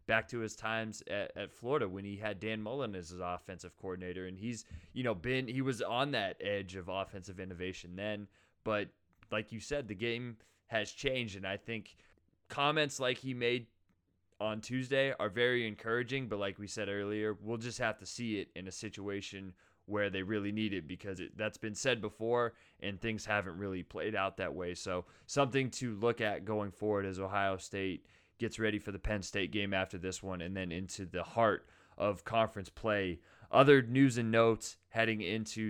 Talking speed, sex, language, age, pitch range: 195 wpm, male, English, 20-39, 95-110 Hz